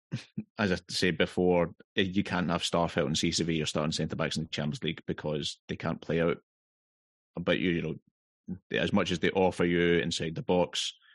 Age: 20-39